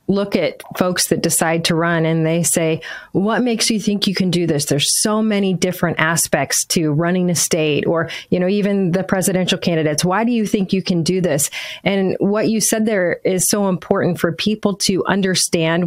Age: 30-49